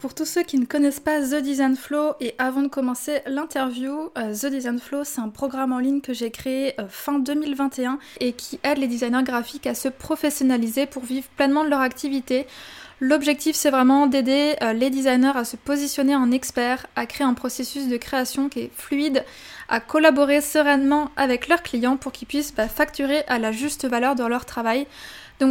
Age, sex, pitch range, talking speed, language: 20-39, female, 255-285 Hz, 190 wpm, French